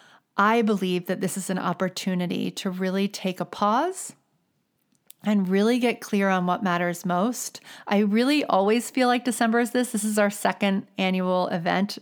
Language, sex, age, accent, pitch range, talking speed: English, female, 30-49, American, 185-215 Hz, 170 wpm